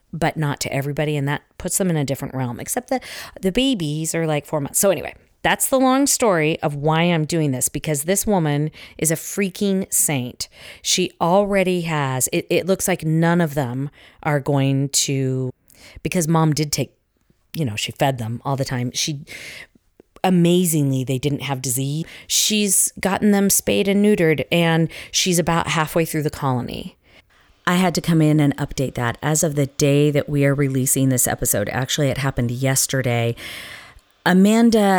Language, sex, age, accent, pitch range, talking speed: English, female, 40-59, American, 135-170 Hz, 180 wpm